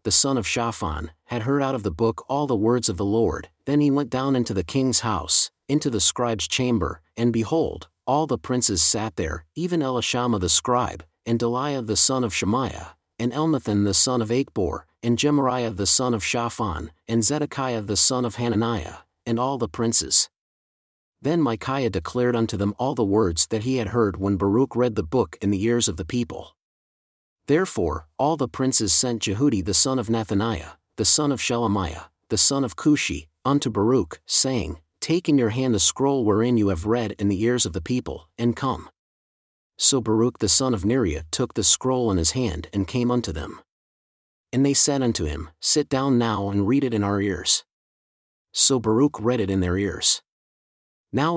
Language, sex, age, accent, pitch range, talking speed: English, male, 50-69, American, 100-130 Hz, 195 wpm